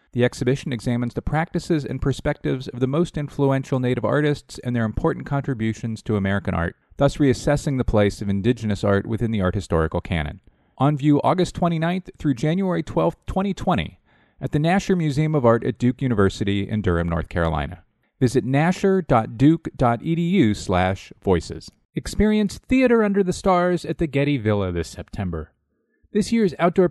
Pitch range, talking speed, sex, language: 110-170 Hz, 160 wpm, male, English